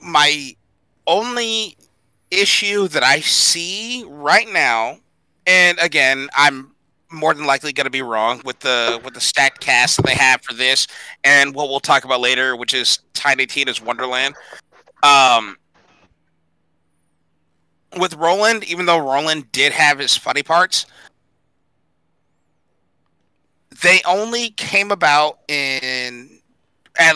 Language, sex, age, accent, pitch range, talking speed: English, male, 30-49, American, 125-165 Hz, 125 wpm